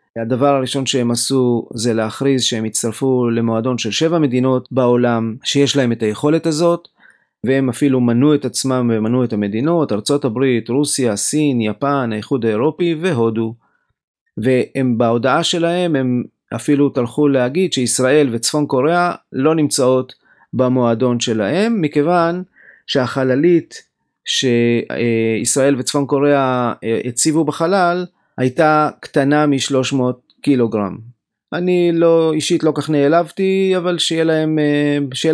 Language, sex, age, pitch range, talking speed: Hebrew, male, 30-49, 120-150 Hz, 115 wpm